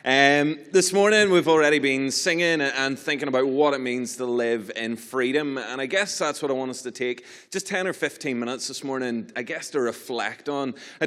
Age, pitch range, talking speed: 30-49, 125-150 Hz, 215 wpm